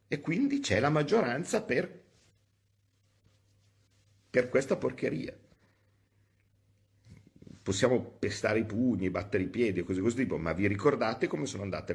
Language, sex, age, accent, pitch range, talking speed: Italian, male, 50-69, native, 90-110 Hz, 130 wpm